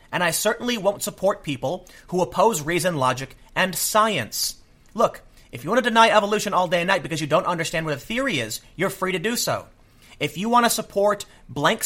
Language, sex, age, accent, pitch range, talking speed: English, male, 30-49, American, 145-205 Hz, 215 wpm